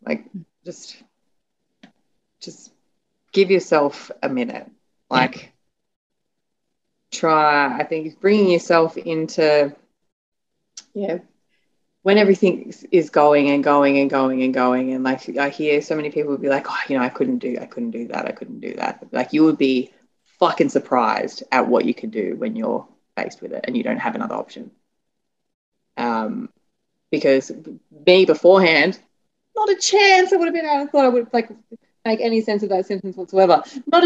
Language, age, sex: English, 20-39, female